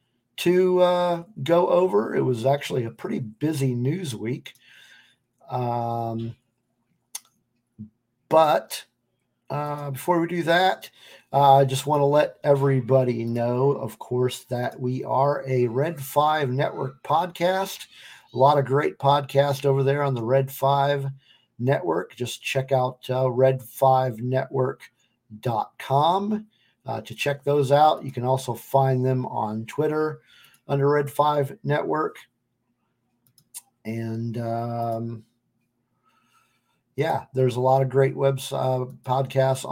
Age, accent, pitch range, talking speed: 50-69, American, 120-145 Hz, 120 wpm